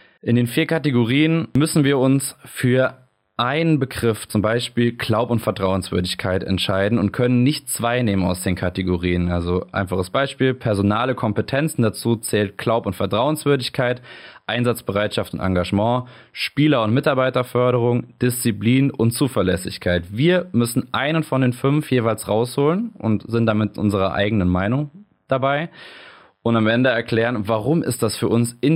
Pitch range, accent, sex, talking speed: 105-130 Hz, German, male, 140 wpm